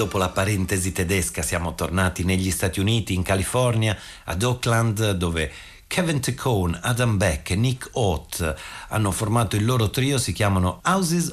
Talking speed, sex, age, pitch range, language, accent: 155 wpm, male, 50-69, 90-125 Hz, Italian, native